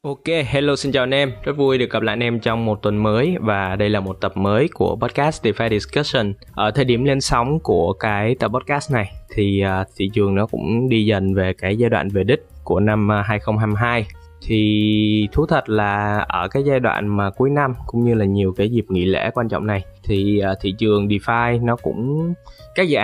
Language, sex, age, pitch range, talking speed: Vietnamese, male, 20-39, 100-115 Hz, 215 wpm